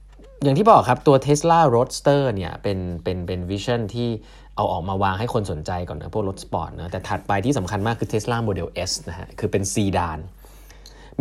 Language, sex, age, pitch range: Thai, male, 20-39, 95-120 Hz